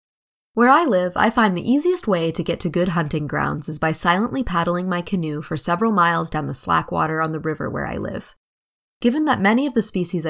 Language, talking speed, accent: English, 225 wpm, American